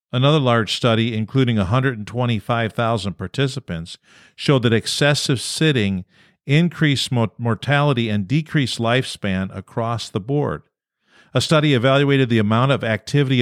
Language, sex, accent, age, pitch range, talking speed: English, male, American, 50-69, 110-140 Hz, 110 wpm